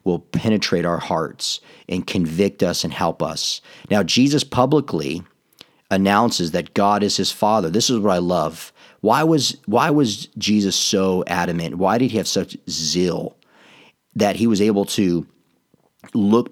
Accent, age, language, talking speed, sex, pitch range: American, 40-59, English, 155 wpm, male, 90-105 Hz